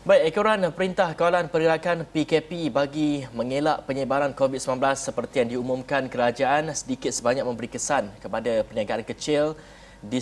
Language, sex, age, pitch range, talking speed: Malay, male, 30-49, 125-150 Hz, 130 wpm